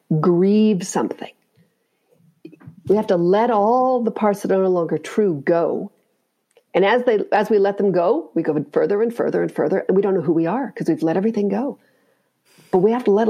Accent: American